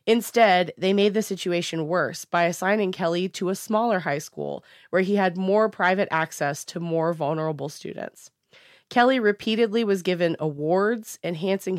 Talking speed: 155 wpm